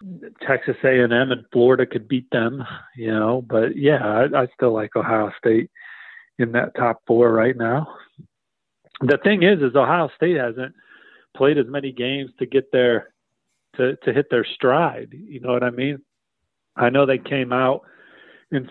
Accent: American